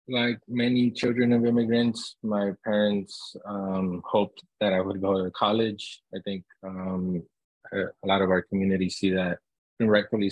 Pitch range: 90-105 Hz